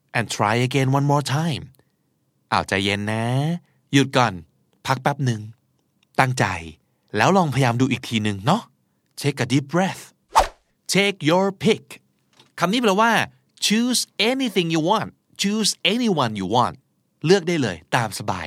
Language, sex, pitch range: Thai, male, 125-185 Hz